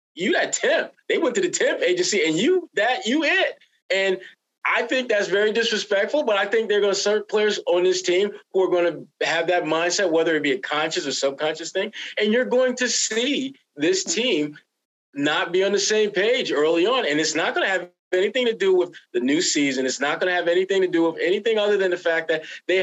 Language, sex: English, male